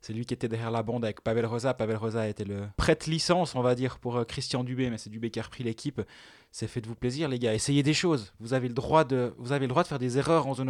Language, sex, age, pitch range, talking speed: French, male, 20-39, 125-155 Hz, 290 wpm